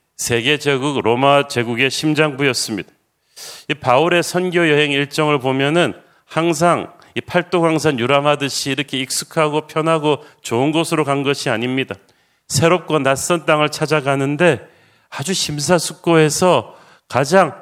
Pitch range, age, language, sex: 135-165 Hz, 40-59, Korean, male